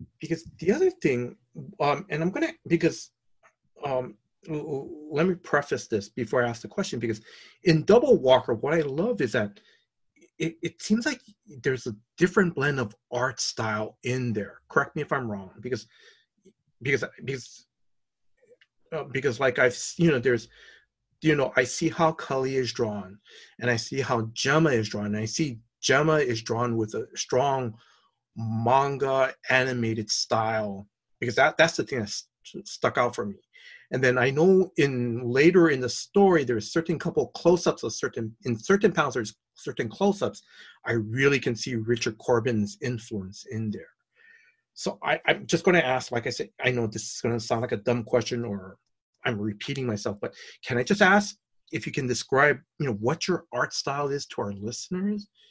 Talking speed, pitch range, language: 180 wpm, 115-165 Hz, English